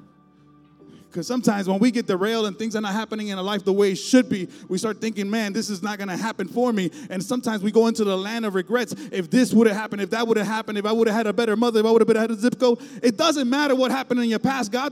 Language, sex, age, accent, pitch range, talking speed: English, male, 30-49, American, 195-245 Hz, 300 wpm